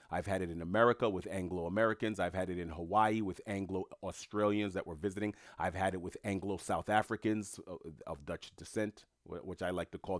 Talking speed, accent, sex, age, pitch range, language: 180 wpm, American, male, 30-49, 90-130 Hz, English